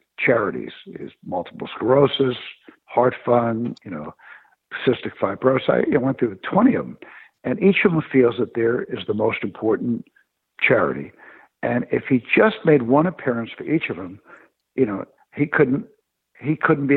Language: English